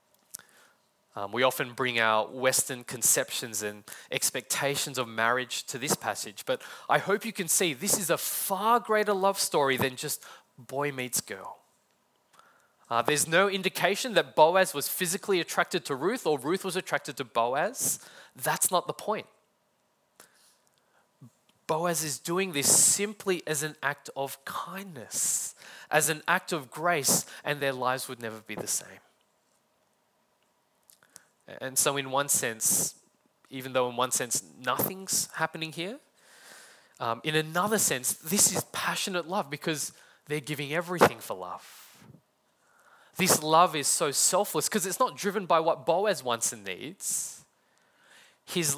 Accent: Australian